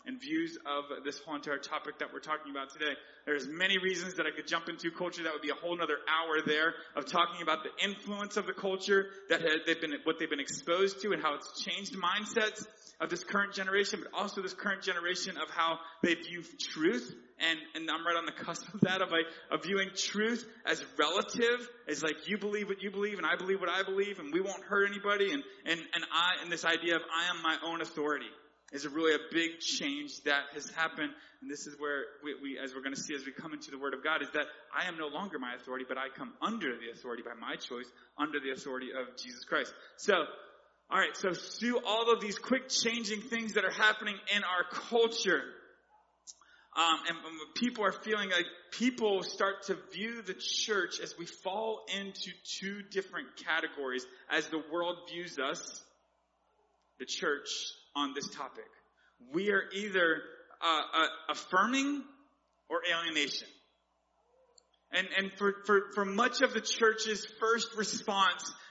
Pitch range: 155-215 Hz